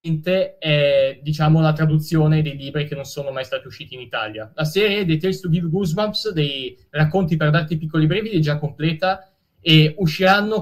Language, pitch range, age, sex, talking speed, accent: Italian, 150-180 Hz, 20-39, male, 180 wpm, native